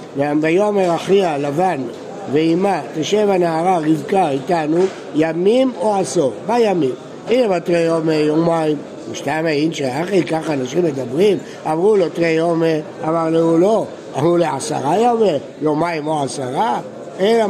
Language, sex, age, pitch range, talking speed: Hebrew, male, 60-79, 165-225 Hz, 125 wpm